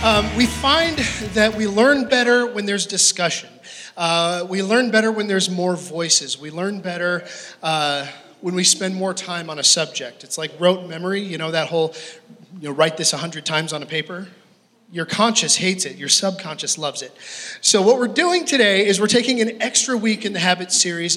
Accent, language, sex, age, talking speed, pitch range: American, English, male, 30-49, 200 wpm, 170-225 Hz